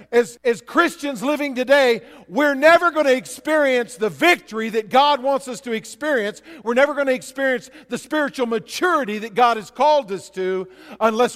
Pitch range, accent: 160-255 Hz, American